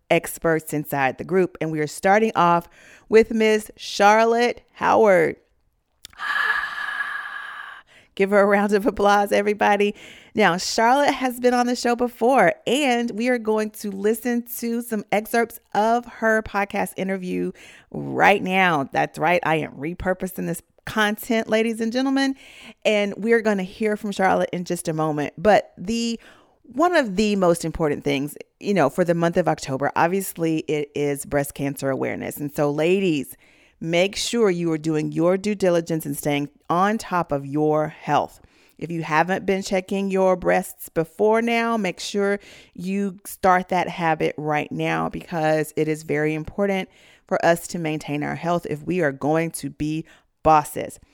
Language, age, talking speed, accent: English, 40-59, 165 wpm, American